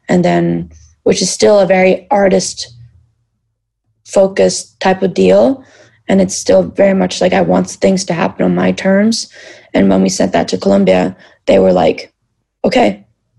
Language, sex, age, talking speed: English, female, 20-39, 160 wpm